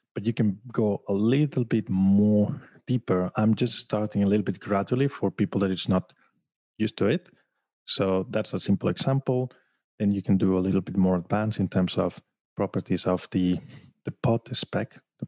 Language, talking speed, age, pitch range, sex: English, 190 wpm, 20-39, 95-115 Hz, male